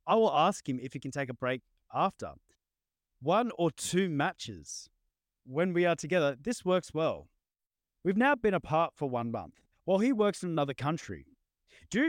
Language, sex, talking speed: English, male, 180 wpm